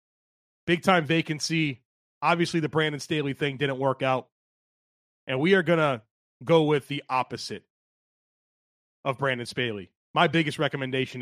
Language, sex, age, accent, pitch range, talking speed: English, male, 30-49, American, 130-160 Hz, 135 wpm